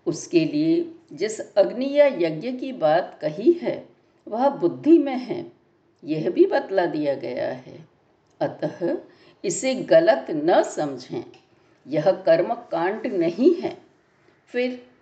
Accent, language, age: native, Hindi, 60-79